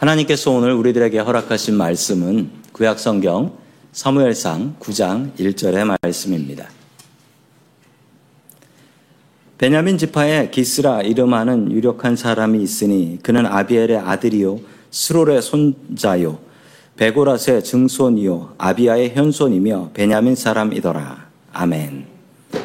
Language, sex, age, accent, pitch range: Korean, male, 50-69, native, 105-150 Hz